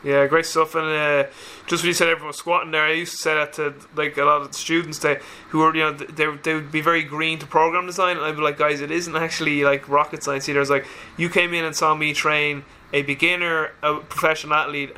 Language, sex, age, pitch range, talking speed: English, male, 20-39, 145-160 Hz, 260 wpm